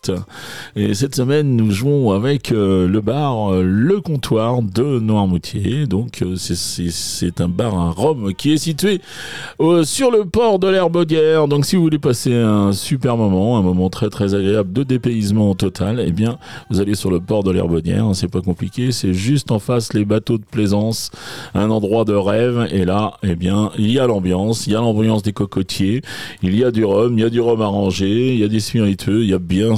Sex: male